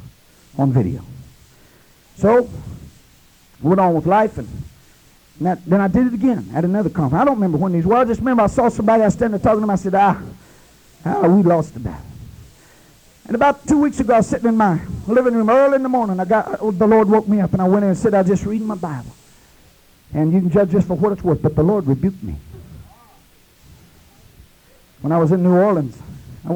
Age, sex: 50-69, male